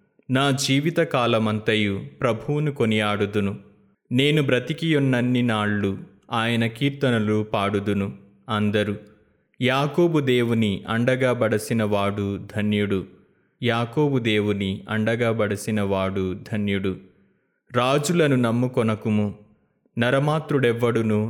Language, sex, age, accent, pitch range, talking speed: Telugu, male, 20-39, native, 105-125 Hz, 60 wpm